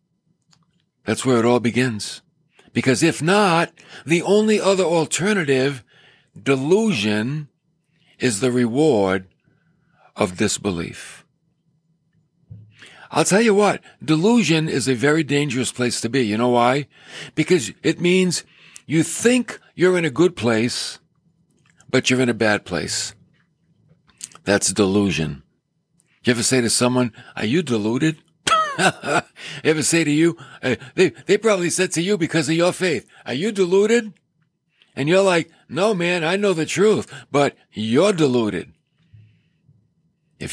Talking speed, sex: 135 wpm, male